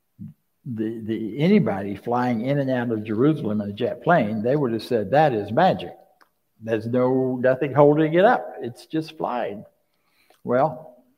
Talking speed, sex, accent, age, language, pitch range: 160 wpm, male, American, 60-79, English, 125-170 Hz